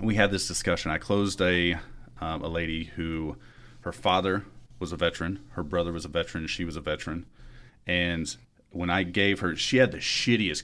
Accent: American